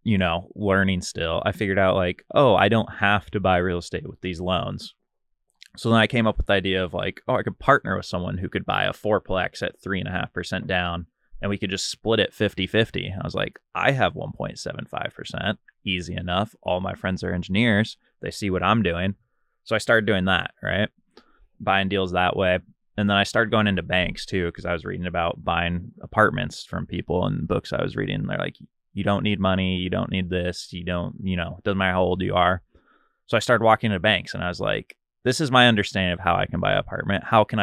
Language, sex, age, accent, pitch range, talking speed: English, male, 20-39, American, 90-105 Hz, 240 wpm